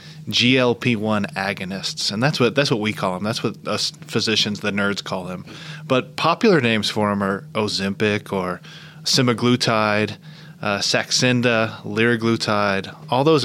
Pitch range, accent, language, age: 110-160 Hz, American, English, 20-39